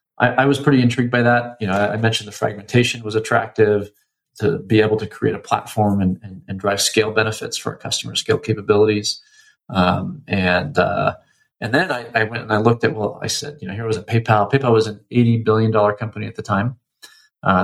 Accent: American